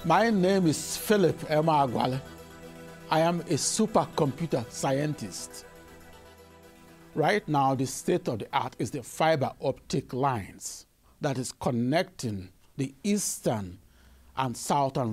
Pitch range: 100-155 Hz